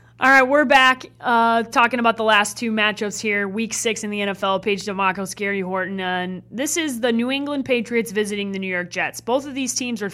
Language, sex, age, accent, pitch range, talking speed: English, female, 30-49, American, 190-230 Hz, 230 wpm